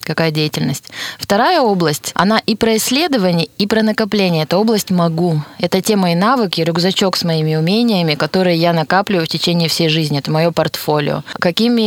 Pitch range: 160-190 Hz